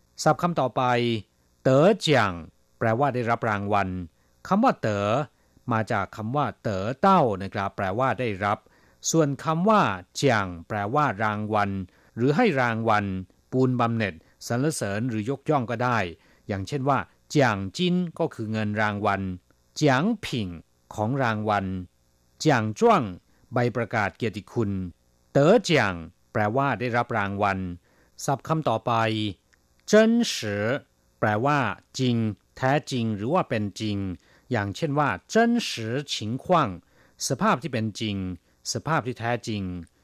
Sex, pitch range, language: male, 100-140 Hz, Thai